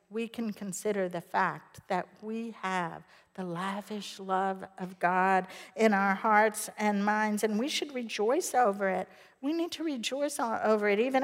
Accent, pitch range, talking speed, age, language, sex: American, 190-230 Hz, 165 wpm, 60-79, English, female